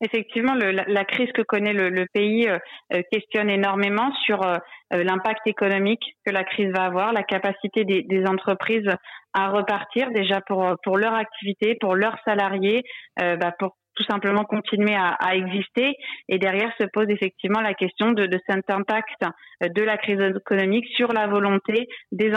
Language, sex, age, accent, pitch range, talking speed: French, female, 30-49, French, 190-215 Hz, 175 wpm